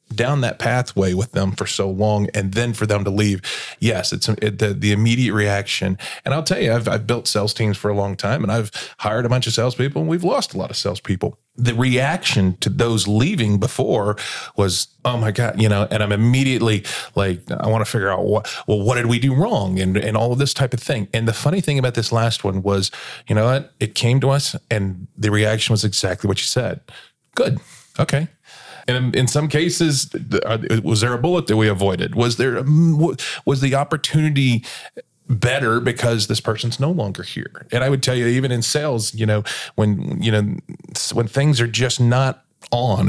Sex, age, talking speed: male, 20-39, 215 wpm